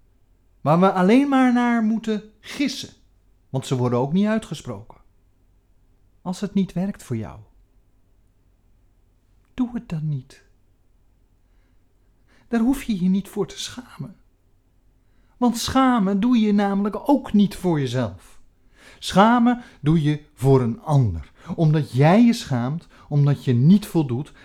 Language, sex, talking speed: Dutch, male, 135 wpm